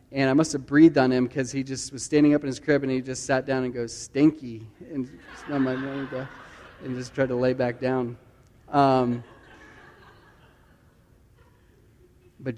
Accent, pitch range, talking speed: American, 125-145 Hz, 175 wpm